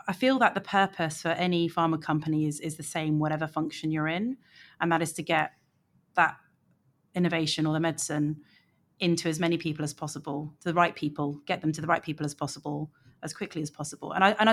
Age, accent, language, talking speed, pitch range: 30-49, British, English, 210 wpm, 155-180 Hz